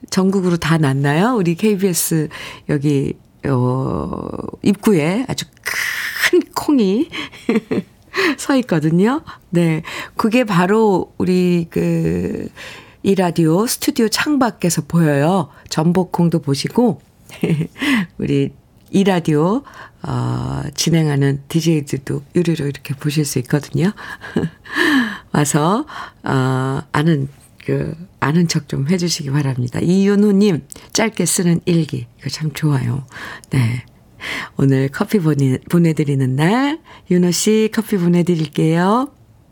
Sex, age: female, 50-69